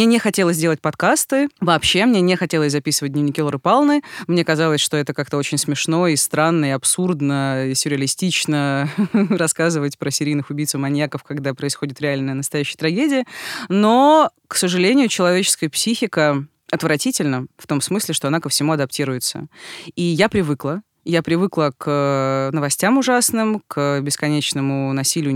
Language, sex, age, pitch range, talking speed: Russian, female, 30-49, 140-185 Hz, 150 wpm